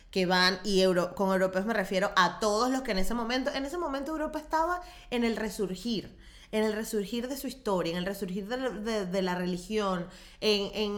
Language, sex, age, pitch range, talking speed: Spanish, female, 20-39, 185-250 Hz, 215 wpm